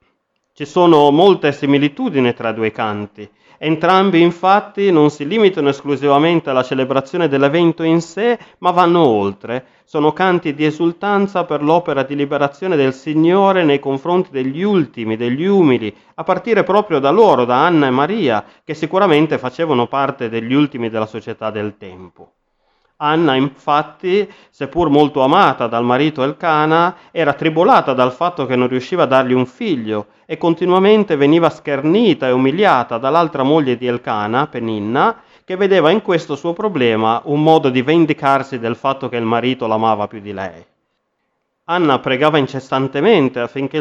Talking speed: 150 wpm